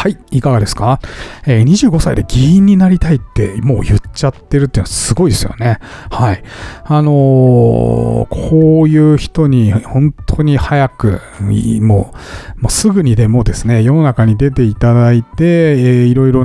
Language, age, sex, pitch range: Japanese, 40-59, male, 110-150 Hz